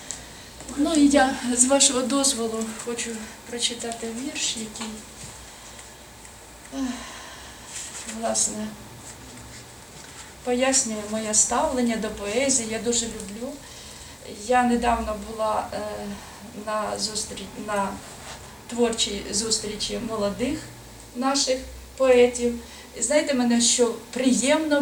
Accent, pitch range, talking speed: native, 220-265 Hz, 80 wpm